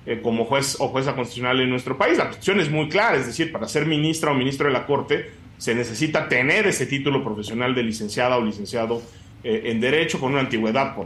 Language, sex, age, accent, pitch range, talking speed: Spanish, male, 40-59, Mexican, 115-155 Hz, 220 wpm